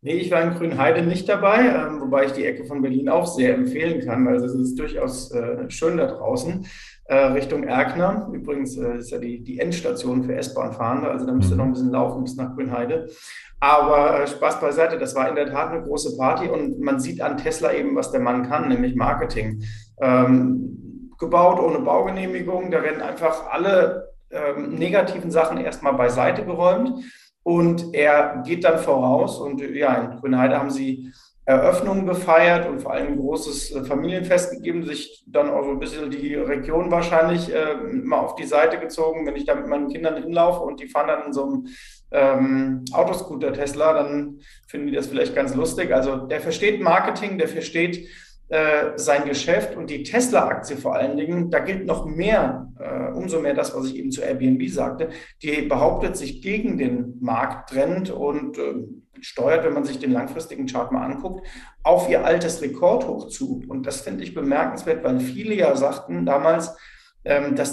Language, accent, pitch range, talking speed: German, German, 140-205 Hz, 180 wpm